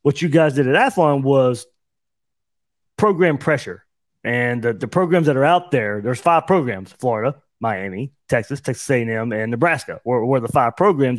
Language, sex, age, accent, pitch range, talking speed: English, male, 30-49, American, 125-160 Hz, 165 wpm